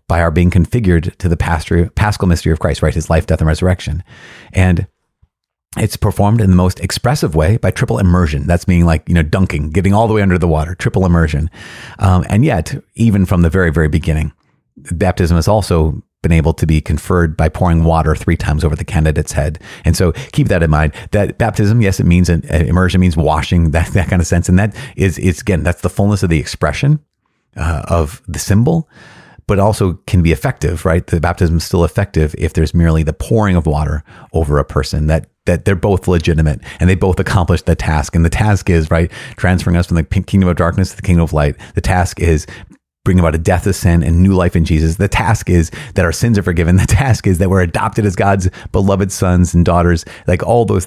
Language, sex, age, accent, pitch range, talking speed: English, male, 30-49, American, 80-100 Hz, 220 wpm